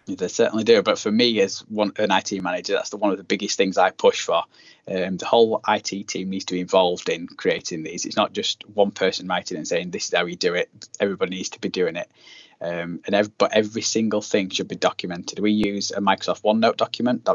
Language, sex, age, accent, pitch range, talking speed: English, male, 10-29, British, 105-120 Hz, 245 wpm